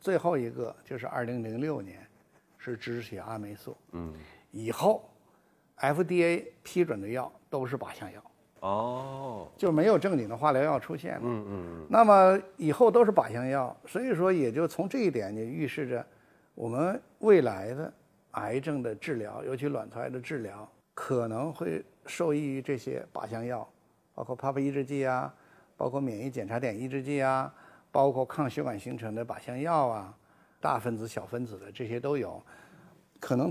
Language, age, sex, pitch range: Chinese, 60-79, male, 115-145 Hz